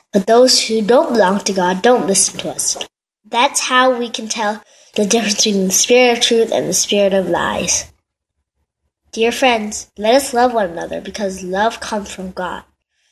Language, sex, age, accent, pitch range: Korean, female, 10-29, American, 210-255 Hz